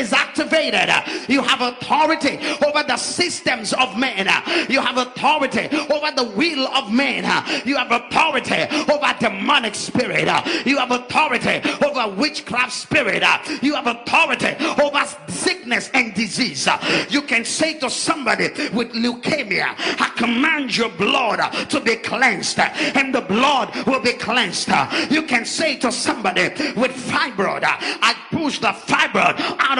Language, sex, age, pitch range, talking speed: English, male, 40-59, 245-300 Hz, 140 wpm